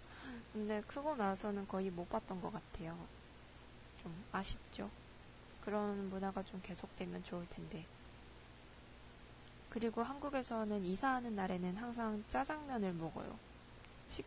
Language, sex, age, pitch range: Japanese, female, 20-39, 180-220 Hz